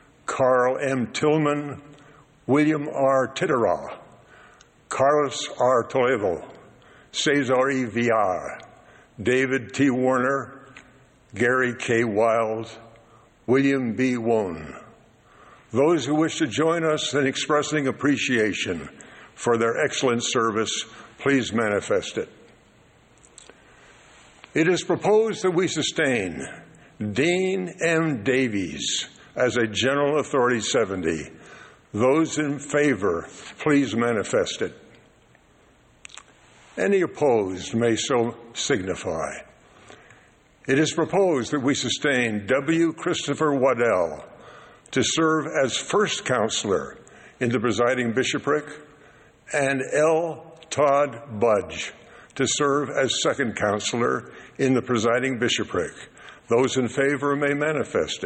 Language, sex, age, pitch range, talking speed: English, male, 60-79, 120-150 Hz, 100 wpm